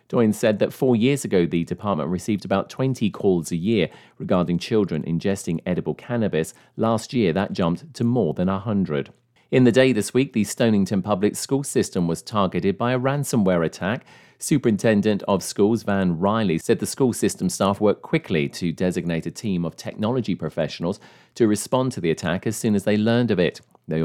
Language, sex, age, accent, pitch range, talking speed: English, male, 40-59, British, 90-120 Hz, 185 wpm